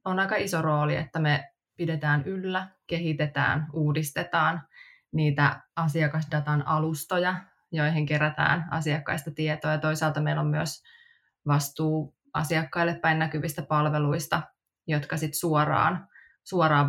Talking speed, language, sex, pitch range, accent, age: 110 wpm, Finnish, female, 155-175 Hz, native, 20-39